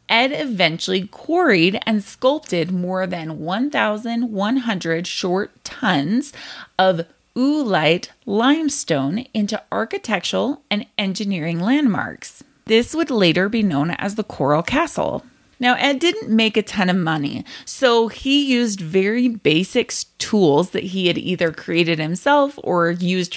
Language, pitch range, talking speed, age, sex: English, 170-235 Hz, 125 wpm, 30-49, female